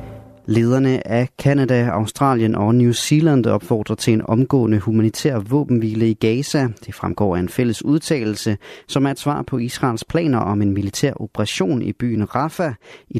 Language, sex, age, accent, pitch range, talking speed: Danish, male, 30-49, native, 105-130 Hz, 165 wpm